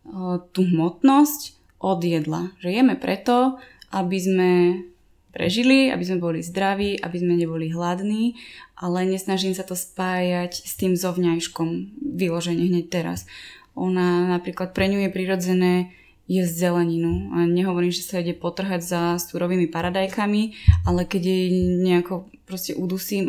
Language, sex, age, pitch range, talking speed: Slovak, female, 20-39, 175-190 Hz, 135 wpm